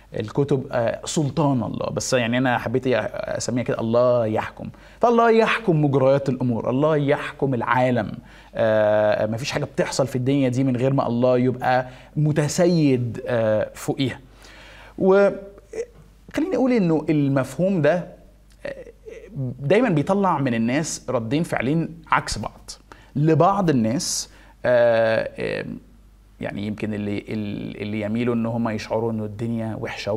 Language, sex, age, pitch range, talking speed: Arabic, male, 20-39, 115-155 Hz, 115 wpm